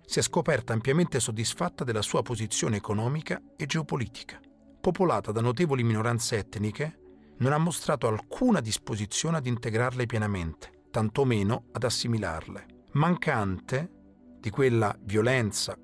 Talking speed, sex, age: 115 wpm, male, 40-59